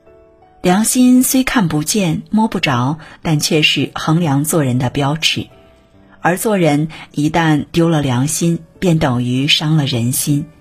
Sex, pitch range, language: female, 130-170 Hz, Chinese